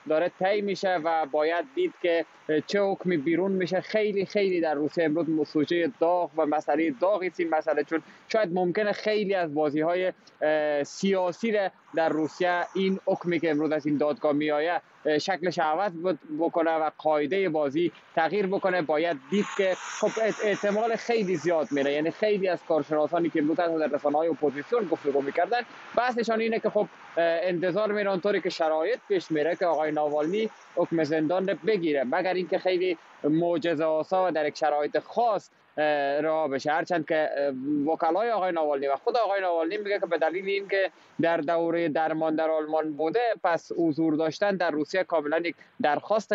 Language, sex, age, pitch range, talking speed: Persian, male, 20-39, 155-195 Hz, 165 wpm